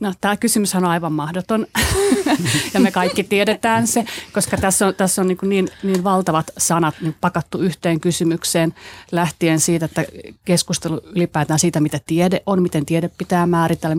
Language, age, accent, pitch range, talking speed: Finnish, 30-49, native, 160-190 Hz, 145 wpm